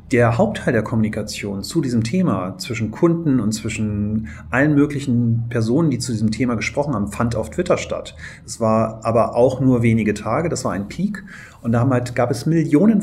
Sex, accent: male, German